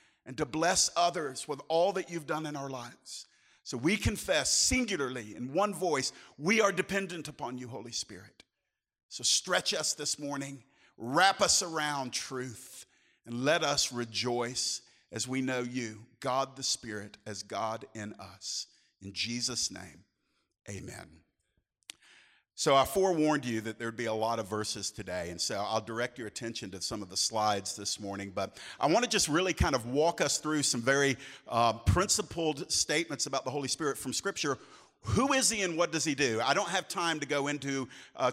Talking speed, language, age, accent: 185 wpm, English, 50-69, American